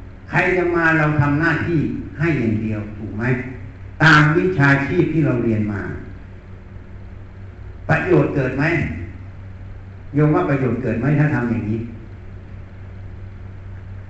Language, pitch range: Thai, 95-150 Hz